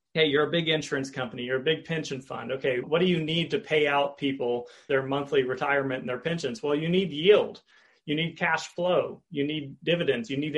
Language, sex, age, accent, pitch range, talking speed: English, male, 30-49, American, 135-165 Hz, 220 wpm